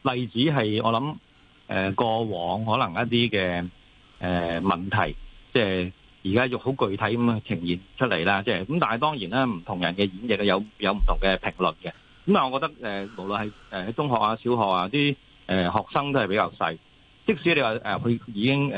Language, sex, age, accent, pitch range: Chinese, male, 30-49, native, 95-130 Hz